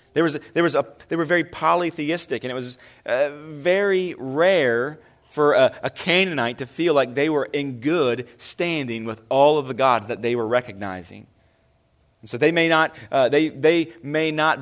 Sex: male